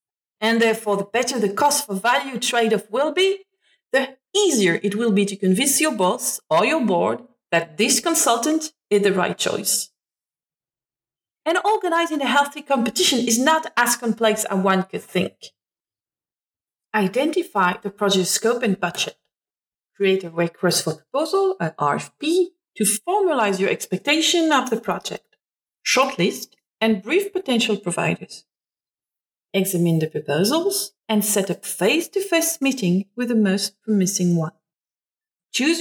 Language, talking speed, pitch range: English, 135 wpm, 190-295 Hz